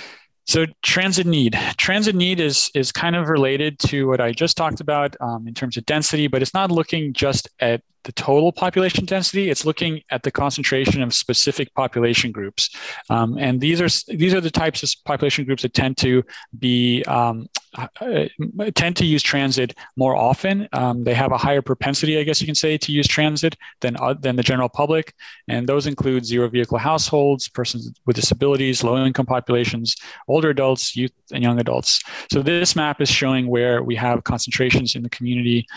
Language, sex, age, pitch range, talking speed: English, male, 30-49, 120-155 Hz, 185 wpm